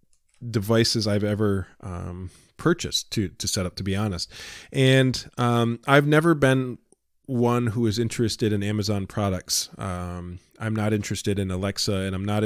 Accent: American